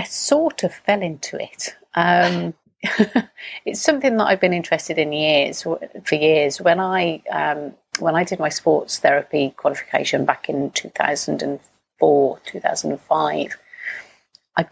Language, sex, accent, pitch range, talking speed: English, female, British, 150-205 Hz, 155 wpm